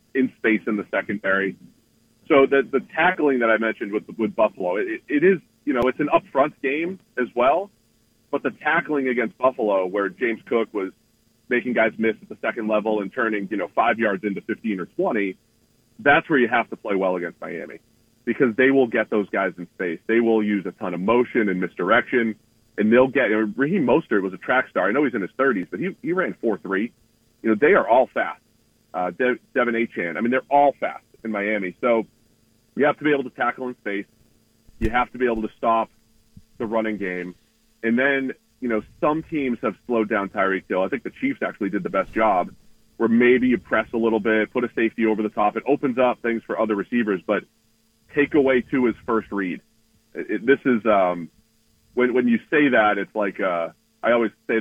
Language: English